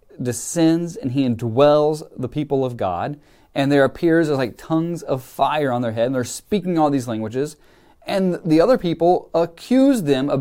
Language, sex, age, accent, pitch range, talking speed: English, male, 30-49, American, 130-175 Hz, 180 wpm